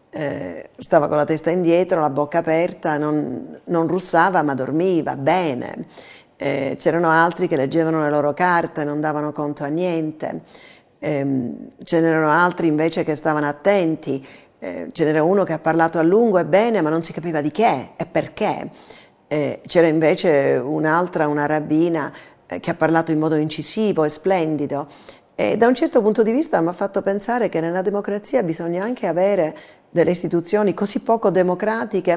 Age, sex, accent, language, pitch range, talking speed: 50-69, female, native, Italian, 160-195 Hz, 165 wpm